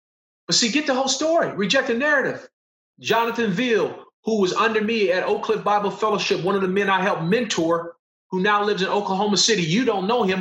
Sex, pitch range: male, 165-215 Hz